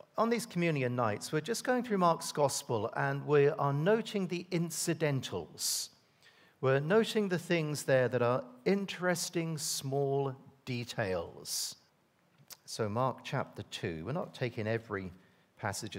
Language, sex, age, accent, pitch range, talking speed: English, male, 50-69, British, 105-155 Hz, 130 wpm